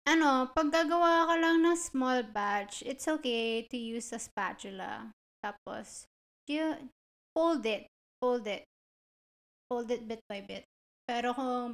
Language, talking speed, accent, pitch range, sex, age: Filipino, 140 wpm, native, 220-255 Hz, female, 20-39